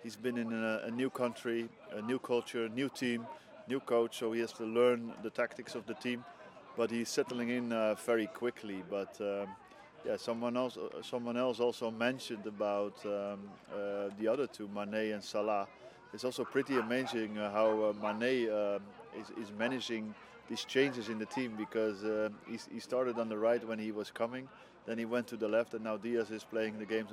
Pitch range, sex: 105-120 Hz, male